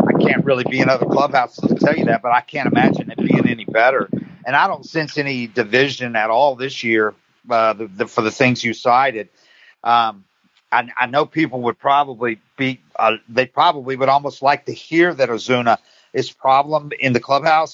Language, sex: English, male